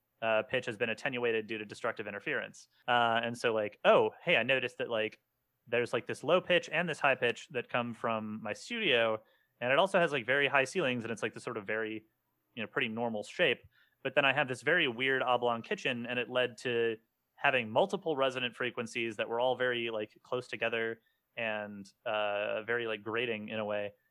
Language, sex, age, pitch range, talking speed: English, male, 30-49, 110-135 Hz, 210 wpm